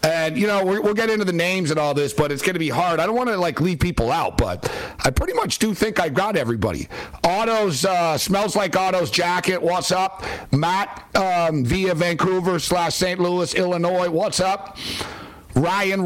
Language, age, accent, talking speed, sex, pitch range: English, 60-79, American, 205 wpm, male, 145-190 Hz